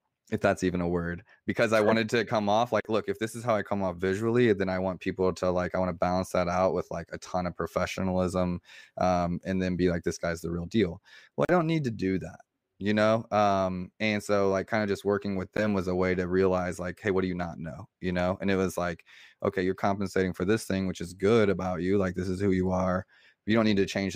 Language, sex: English, male